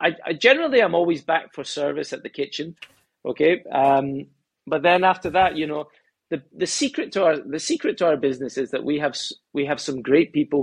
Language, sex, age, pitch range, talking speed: English, male, 30-49, 135-180 Hz, 215 wpm